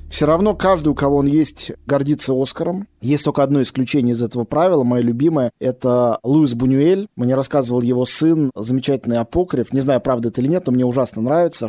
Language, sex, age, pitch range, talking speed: Russian, male, 20-39, 130-180 Hz, 190 wpm